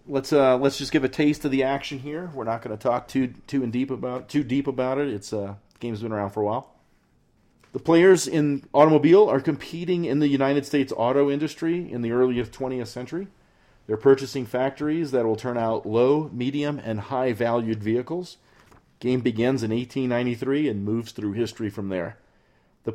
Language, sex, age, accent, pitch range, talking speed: English, male, 40-59, American, 115-145 Hz, 200 wpm